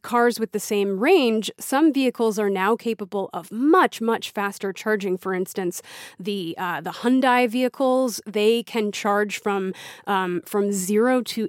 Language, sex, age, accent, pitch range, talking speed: English, female, 30-49, American, 195-235 Hz, 155 wpm